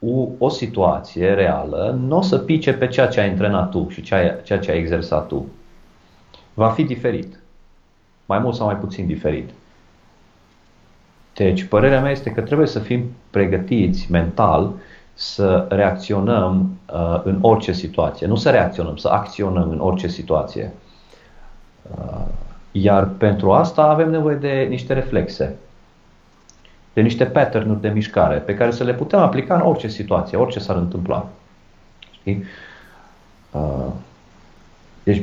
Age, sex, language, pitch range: 40-59, male, Romanian, 90-115 Hz